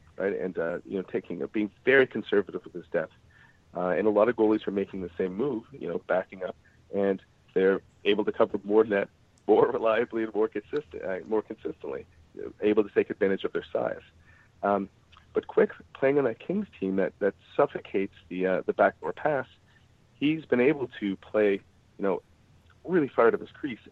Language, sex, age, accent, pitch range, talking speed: English, male, 40-59, American, 100-135 Hz, 200 wpm